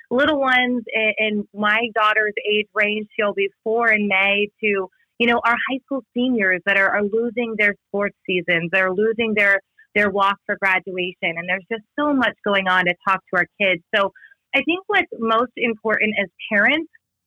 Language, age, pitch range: English, 30-49, 195-250 Hz